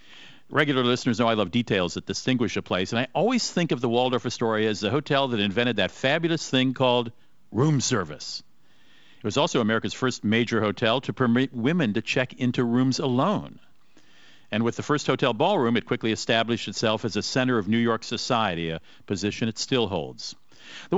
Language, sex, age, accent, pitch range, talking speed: English, male, 50-69, American, 110-135 Hz, 190 wpm